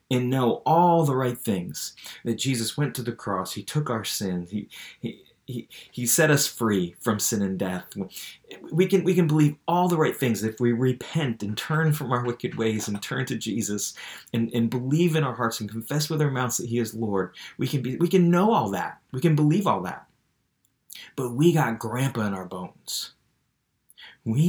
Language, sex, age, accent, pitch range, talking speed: English, male, 30-49, American, 110-150 Hz, 210 wpm